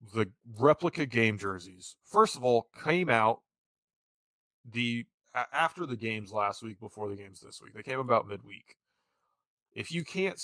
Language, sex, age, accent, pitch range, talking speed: English, male, 30-49, American, 110-140 Hz, 155 wpm